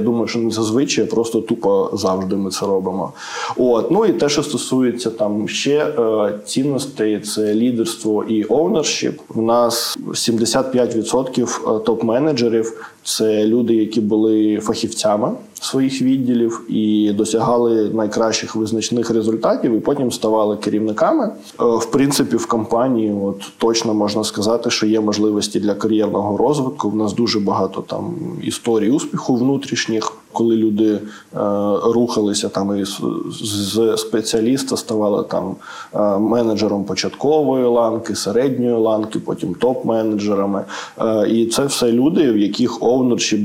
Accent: native